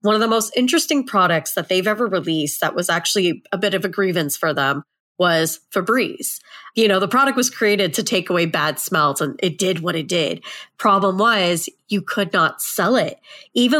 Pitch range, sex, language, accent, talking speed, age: 170-215 Hz, female, English, American, 205 wpm, 30-49